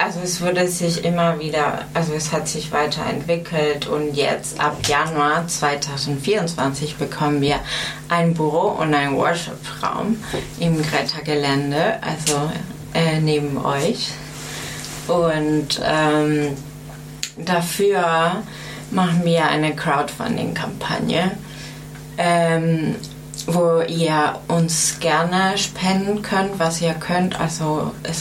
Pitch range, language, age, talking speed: 145-165 Hz, German, 30-49, 105 wpm